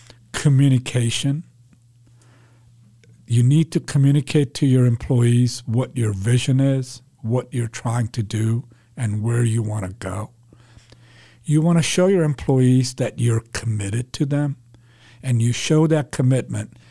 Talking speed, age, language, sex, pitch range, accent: 140 wpm, 60-79, English, male, 115-135 Hz, American